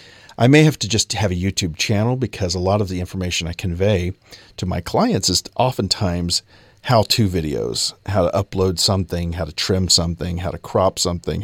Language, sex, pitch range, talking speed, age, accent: English, male, 95-115 Hz, 190 wpm, 40-59, American